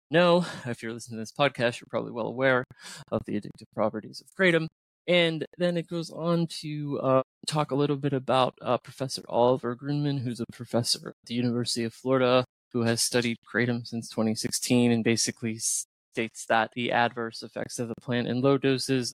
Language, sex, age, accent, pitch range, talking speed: English, male, 20-39, American, 115-140 Hz, 190 wpm